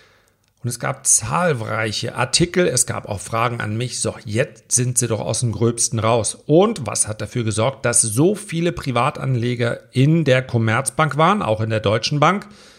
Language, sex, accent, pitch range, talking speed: German, male, German, 115-155 Hz, 175 wpm